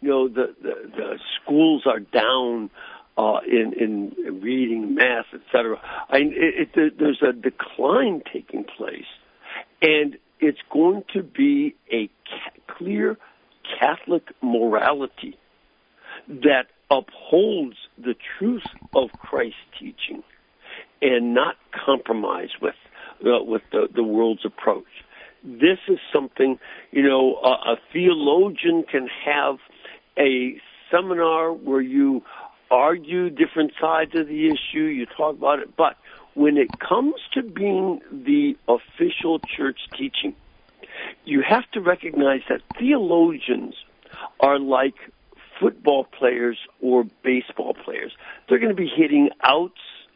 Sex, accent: male, American